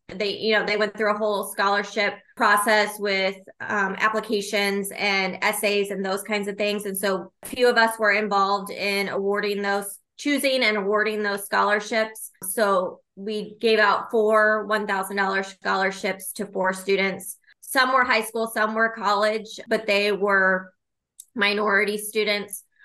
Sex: female